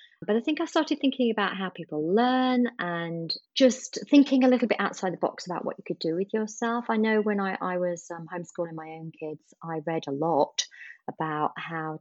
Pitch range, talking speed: 155-195 Hz, 215 wpm